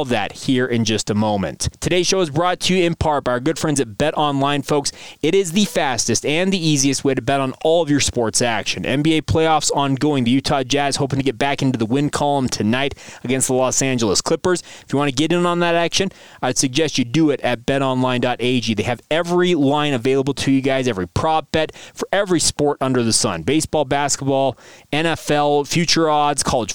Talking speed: 220 wpm